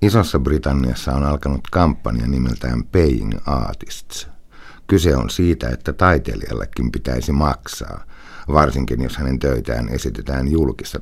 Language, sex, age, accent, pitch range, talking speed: Finnish, male, 60-79, native, 65-75 Hz, 115 wpm